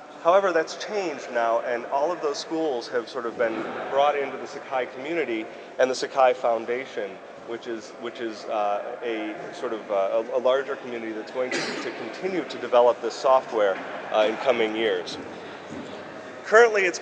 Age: 30-49